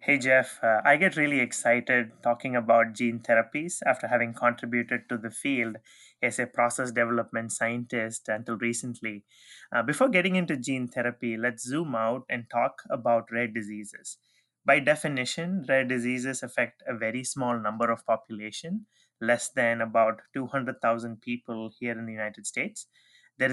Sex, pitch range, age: male, 115-140 Hz, 30-49